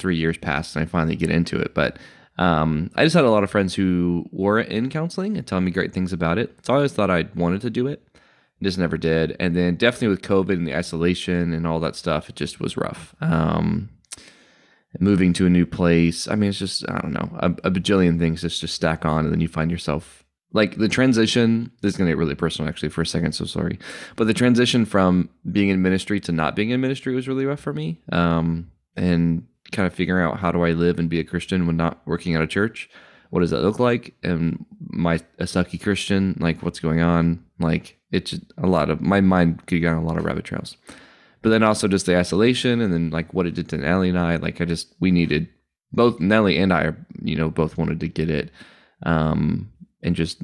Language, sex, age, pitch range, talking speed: English, male, 20-39, 85-100 Hz, 240 wpm